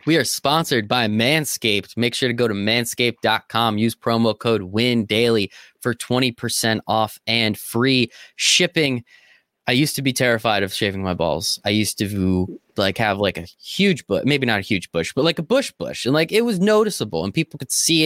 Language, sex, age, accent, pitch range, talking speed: English, male, 20-39, American, 110-155 Hz, 195 wpm